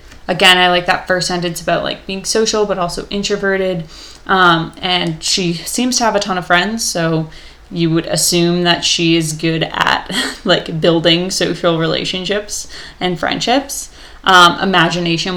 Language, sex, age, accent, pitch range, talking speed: English, female, 20-39, American, 170-200 Hz, 155 wpm